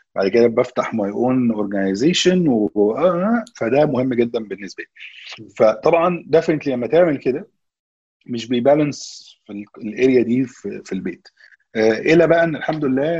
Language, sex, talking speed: Arabic, male, 125 wpm